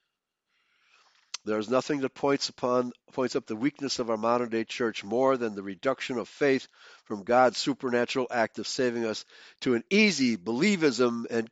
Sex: male